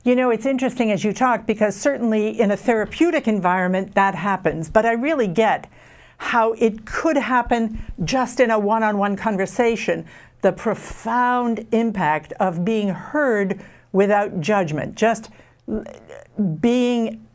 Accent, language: American, English